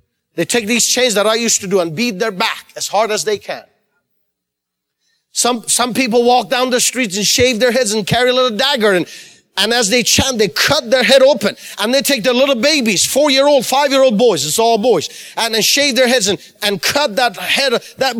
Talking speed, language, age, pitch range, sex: 220 wpm, English, 40-59, 200-270 Hz, male